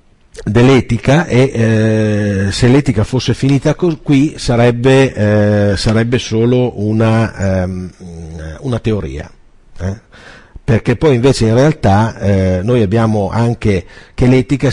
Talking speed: 115 wpm